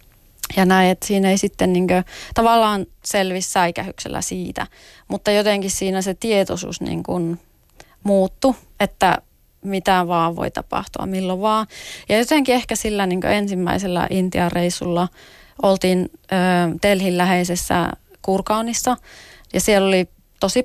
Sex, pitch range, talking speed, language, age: female, 180-225 Hz, 125 wpm, Finnish, 30-49